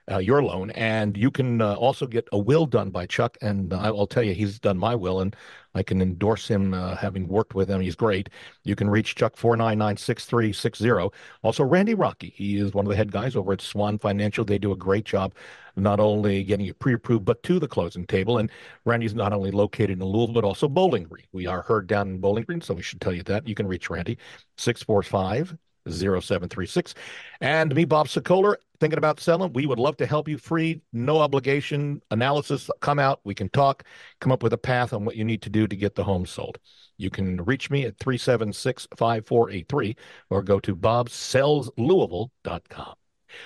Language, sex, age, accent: English, male, 50-69, American